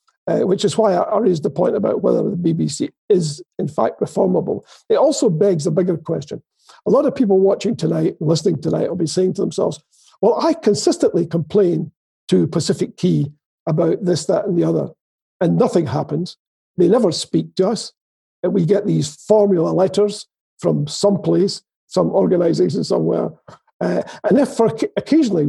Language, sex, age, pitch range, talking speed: English, male, 50-69, 170-215 Hz, 165 wpm